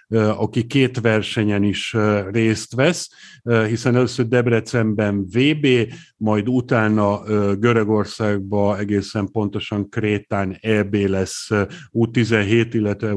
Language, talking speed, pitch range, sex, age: Hungarian, 90 wpm, 105-125 Hz, male, 50-69